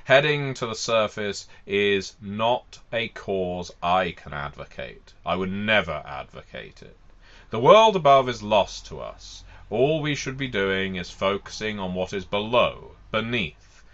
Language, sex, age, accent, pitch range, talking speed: English, male, 30-49, British, 95-125 Hz, 150 wpm